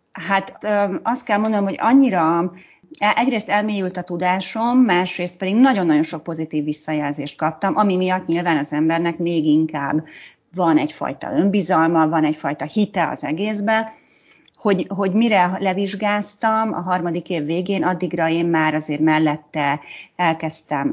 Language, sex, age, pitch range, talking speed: Hungarian, female, 30-49, 160-210 Hz, 130 wpm